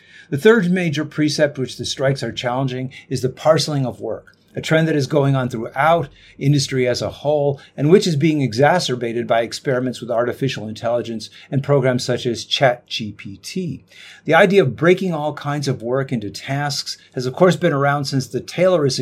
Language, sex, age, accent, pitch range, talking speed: French, male, 50-69, American, 120-150 Hz, 185 wpm